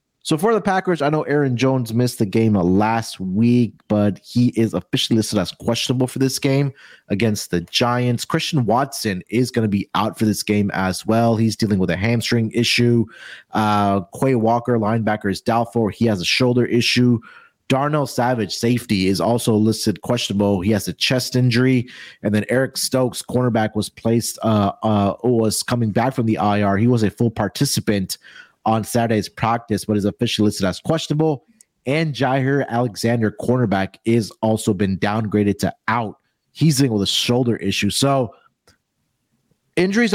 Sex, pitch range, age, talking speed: male, 105-135 Hz, 30-49, 170 wpm